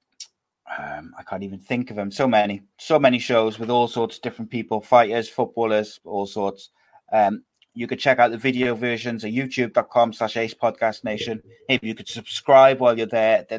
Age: 30-49